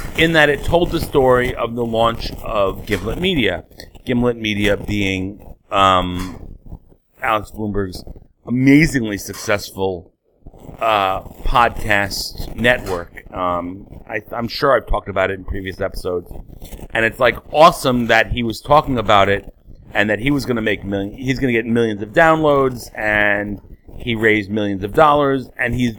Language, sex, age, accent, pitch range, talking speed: English, male, 40-59, American, 100-130 Hz, 155 wpm